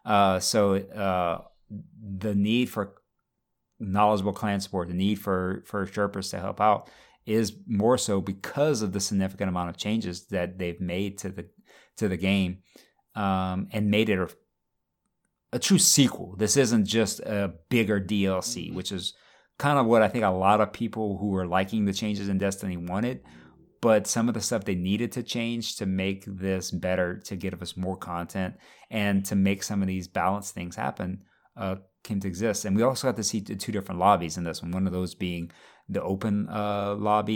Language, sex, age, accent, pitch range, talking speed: English, male, 30-49, American, 90-105 Hz, 190 wpm